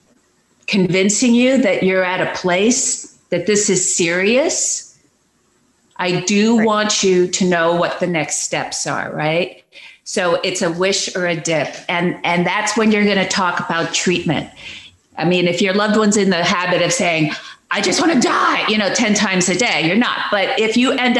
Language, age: English, 50-69